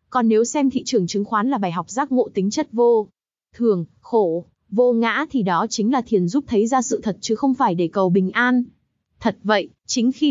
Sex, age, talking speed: female, 20-39, 235 wpm